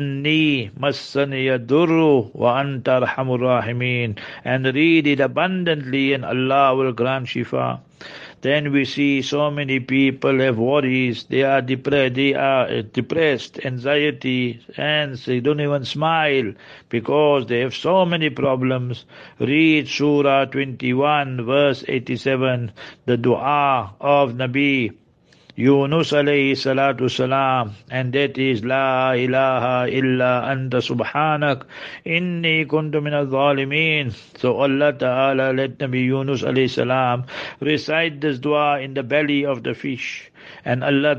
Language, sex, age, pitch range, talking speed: English, male, 60-79, 130-145 Hz, 110 wpm